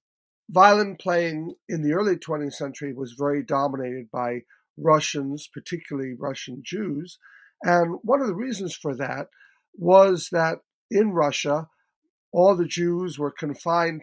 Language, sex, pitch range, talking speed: English, male, 145-185 Hz, 135 wpm